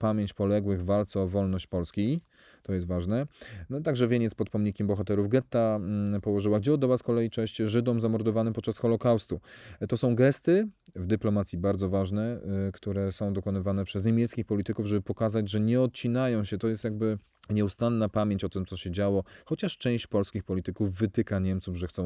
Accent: native